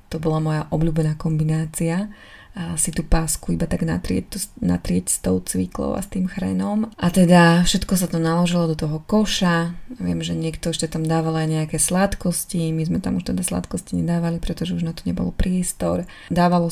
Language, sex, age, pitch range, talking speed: Slovak, female, 20-39, 155-175 Hz, 190 wpm